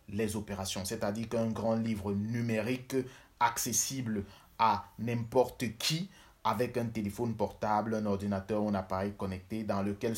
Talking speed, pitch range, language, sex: 135 wpm, 110-150 Hz, French, male